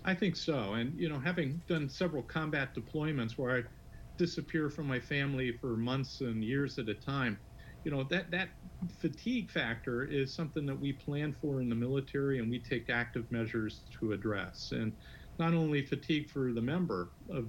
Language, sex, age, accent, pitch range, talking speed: English, male, 50-69, American, 120-160 Hz, 185 wpm